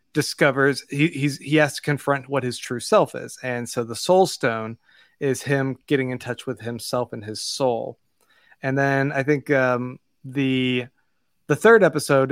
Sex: male